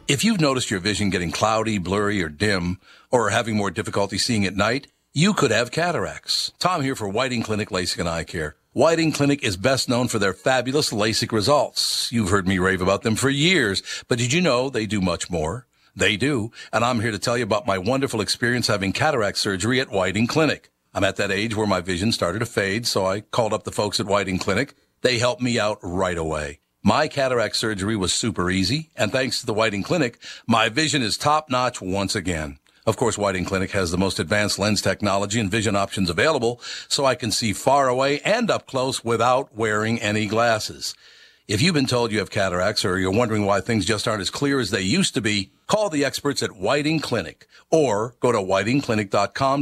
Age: 60-79